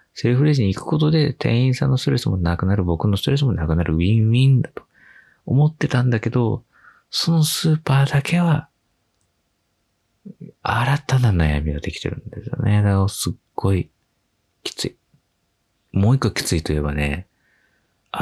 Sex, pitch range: male, 85-130 Hz